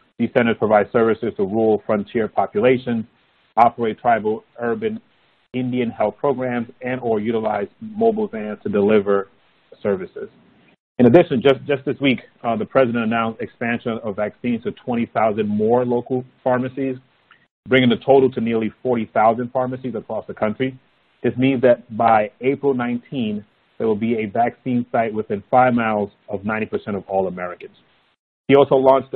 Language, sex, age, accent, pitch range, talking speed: English, male, 30-49, American, 110-130 Hz, 150 wpm